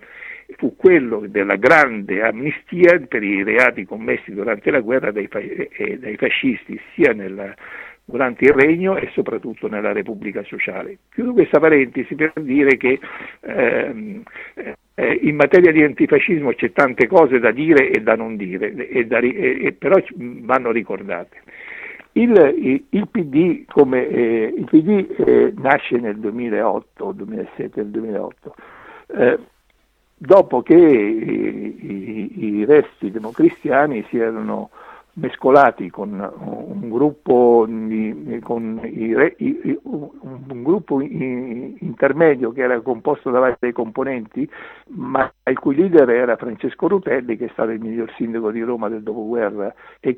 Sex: male